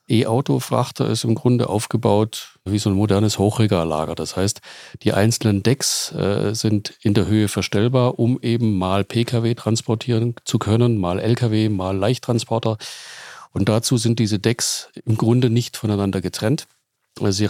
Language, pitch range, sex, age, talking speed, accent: German, 100-120 Hz, male, 40-59, 145 wpm, German